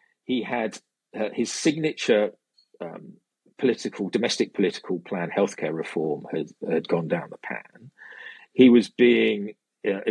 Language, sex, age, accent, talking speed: English, male, 40-59, British, 130 wpm